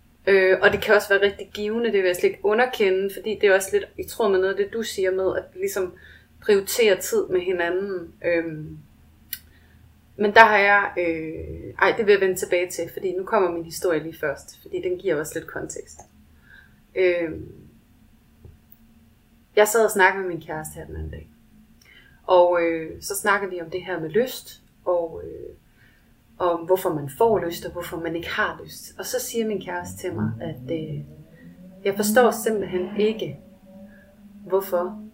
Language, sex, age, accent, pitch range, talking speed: Danish, female, 30-49, native, 170-215 Hz, 190 wpm